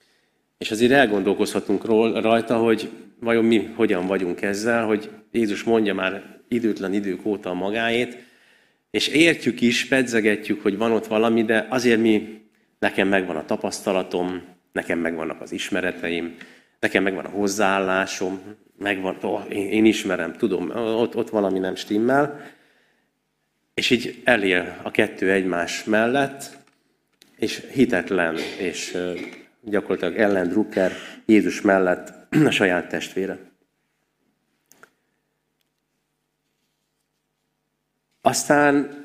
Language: Hungarian